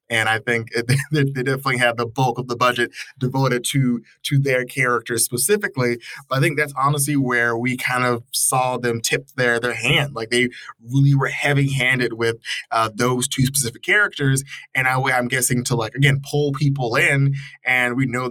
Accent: American